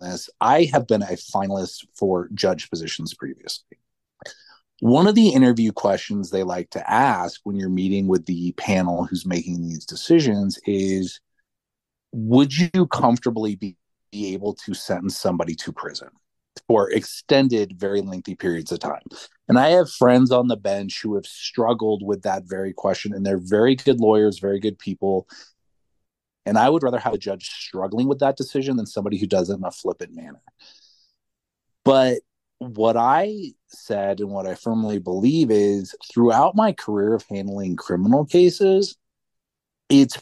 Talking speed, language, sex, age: 160 wpm, English, male, 30-49